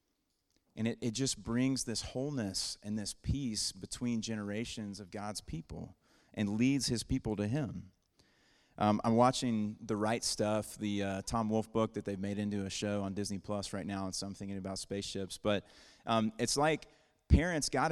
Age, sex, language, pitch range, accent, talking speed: 30-49, male, English, 100-120 Hz, American, 185 wpm